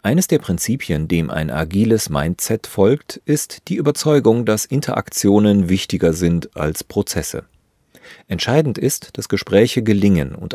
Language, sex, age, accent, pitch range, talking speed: German, male, 40-59, German, 90-120 Hz, 130 wpm